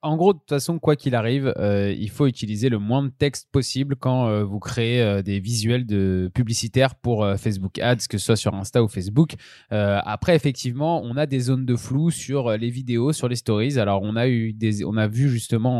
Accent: French